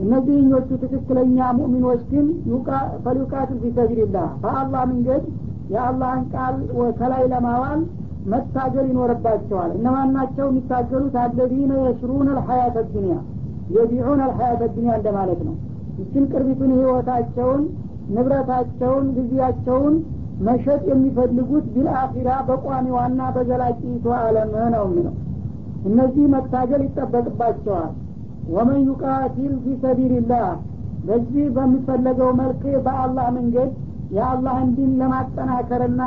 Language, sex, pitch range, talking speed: Amharic, female, 240-260 Hz, 110 wpm